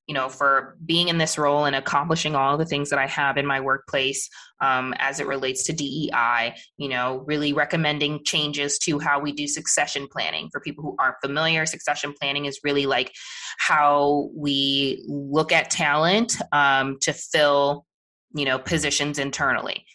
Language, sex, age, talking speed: English, female, 20-39, 170 wpm